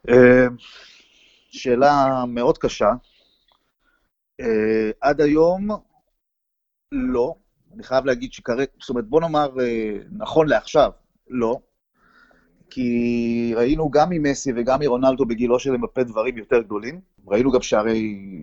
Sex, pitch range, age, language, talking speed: male, 120-185 Hz, 30-49, Hebrew, 115 wpm